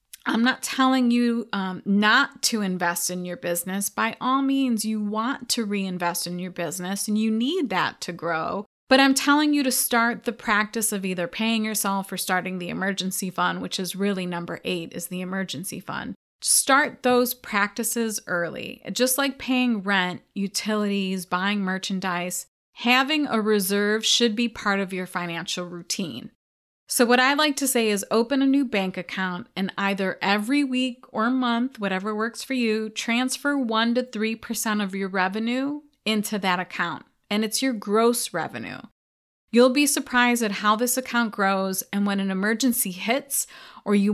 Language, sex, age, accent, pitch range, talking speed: English, female, 30-49, American, 190-240 Hz, 170 wpm